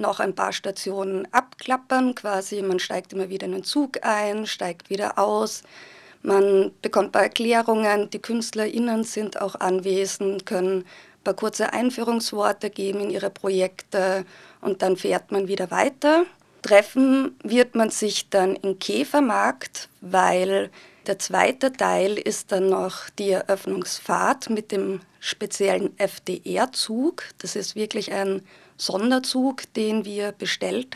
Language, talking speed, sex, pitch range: German, 135 wpm, female, 195-225 Hz